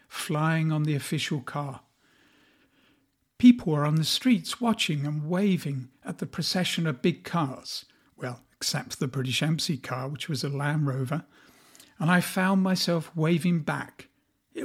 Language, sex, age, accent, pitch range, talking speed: English, male, 60-79, British, 145-195 Hz, 150 wpm